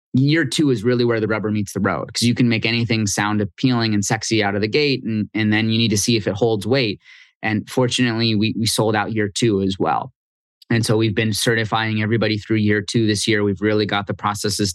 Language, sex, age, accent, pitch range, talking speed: English, male, 20-39, American, 105-125 Hz, 245 wpm